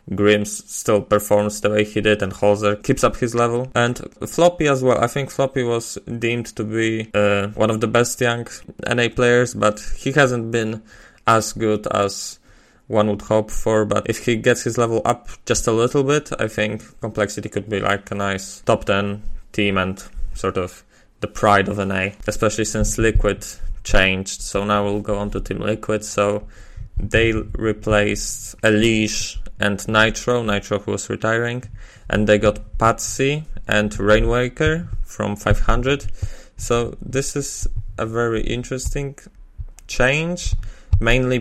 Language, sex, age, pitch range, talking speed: English, male, 20-39, 105-115 Hz, 160 wpm